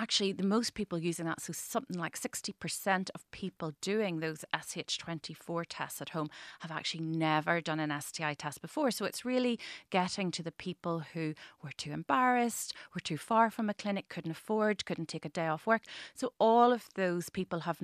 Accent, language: Irish, English